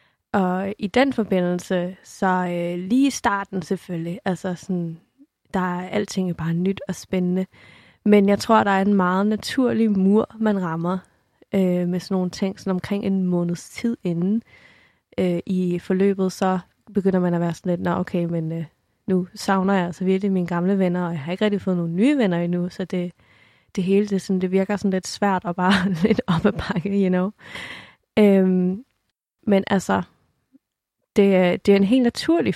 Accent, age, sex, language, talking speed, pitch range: native, 20-39, female, Danish, 190 wpm, 180-205 Hz